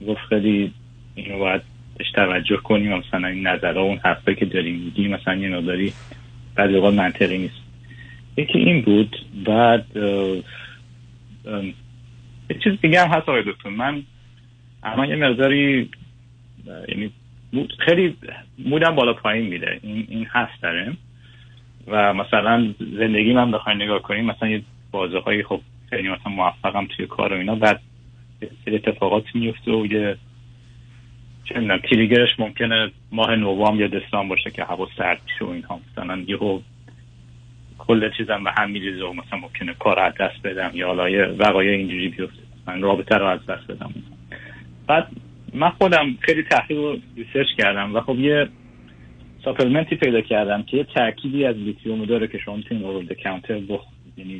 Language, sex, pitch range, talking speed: Persian, male, 95-120 Hz, 145 wpm